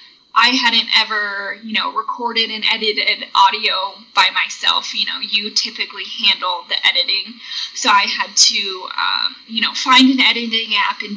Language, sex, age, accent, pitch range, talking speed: English, female, 10-29, American, 215-260 Hz, 160 wpm